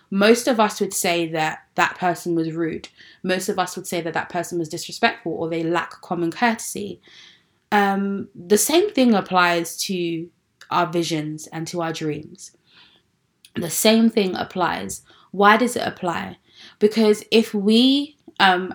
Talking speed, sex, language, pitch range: 155 wpm, female, English, 175-215 Hz